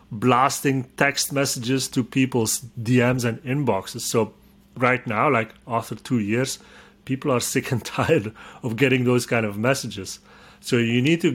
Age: 30-49